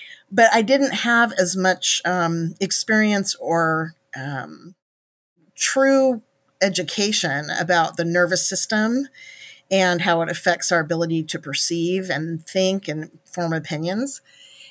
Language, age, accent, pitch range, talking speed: English, 50-69, American, 170-235 Hz, 120 wpm